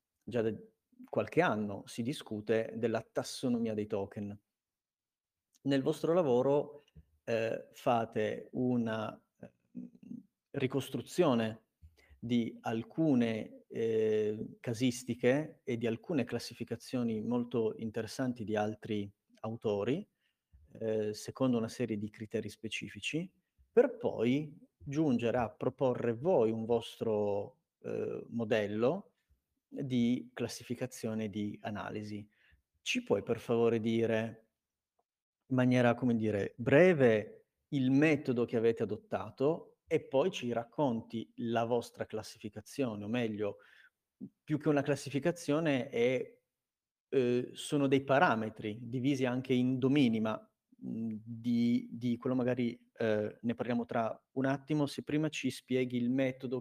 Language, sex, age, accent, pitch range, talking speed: Italian, male, 40-59, native, 110-130 Hz, 110 wpm